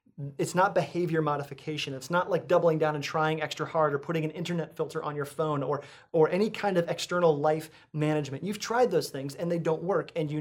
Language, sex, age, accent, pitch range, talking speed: English, male, 30-49, American, 150-180 Hz, 225 wpm